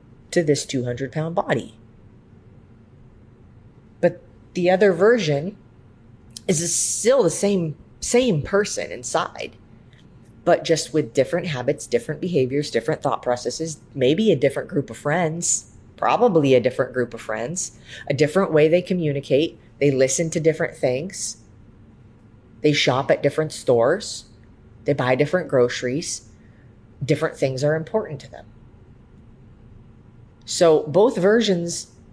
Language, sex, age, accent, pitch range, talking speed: English, female, 30-49, American, 115-155 Hz, 120 wpm